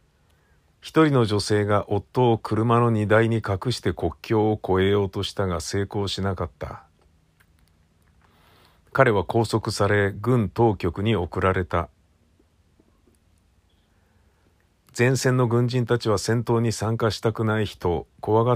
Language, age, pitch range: Japanese, 50-69, 90-115 Hz